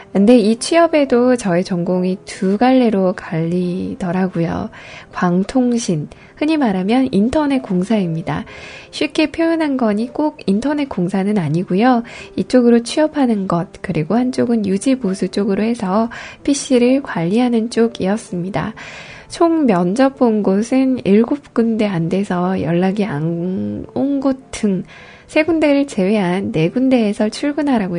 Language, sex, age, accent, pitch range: Korean, female, 10-29, native, 185-260 Hz